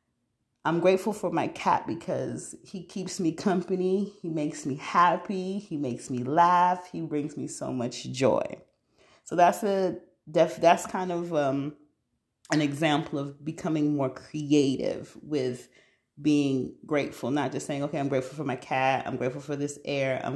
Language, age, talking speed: English, 30-49, 160 wpm